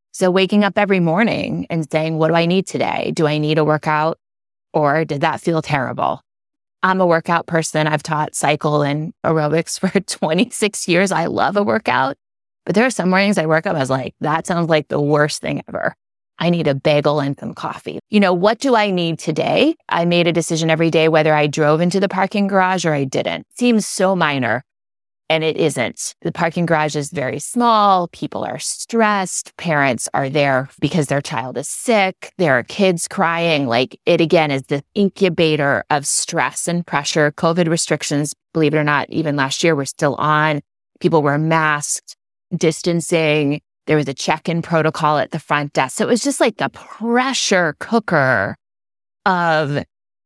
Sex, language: female, English